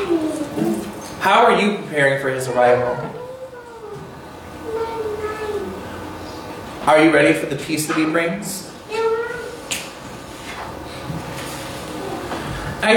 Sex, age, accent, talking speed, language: male, 30-49, American, 80 wpm, English